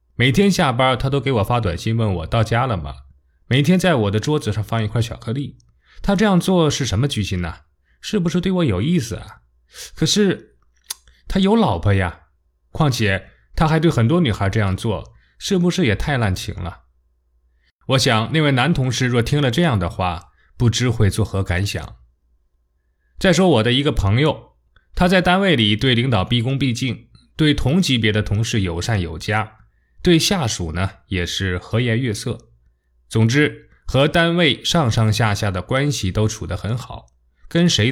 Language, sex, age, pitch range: Chinese, male, 20-39, 90-145 Hz